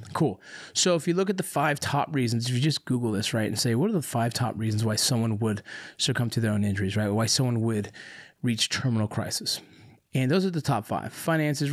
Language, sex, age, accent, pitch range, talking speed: English, male, 30-49, American, 115-145 Hz, 235 wpm